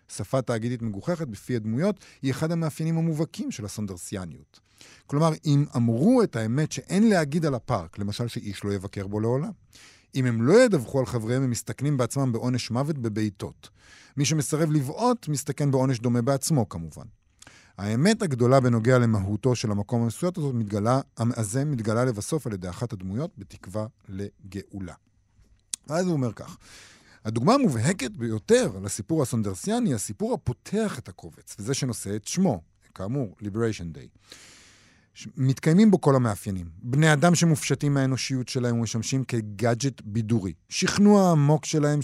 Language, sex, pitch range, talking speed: Hebrew, male, 110-150 Hz, 140 wpm